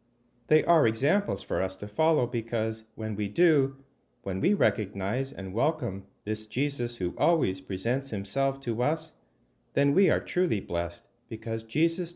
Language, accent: English, American